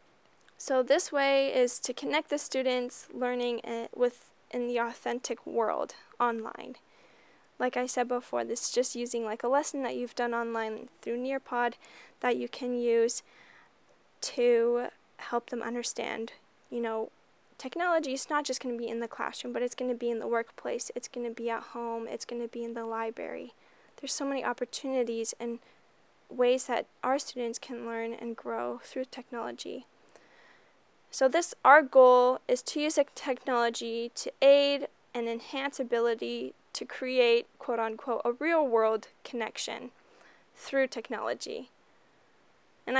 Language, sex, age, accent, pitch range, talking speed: English, female, 10-29, American, 235-265 Hz, 160 wpm